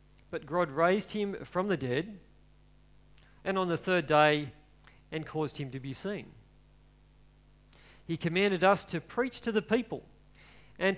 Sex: male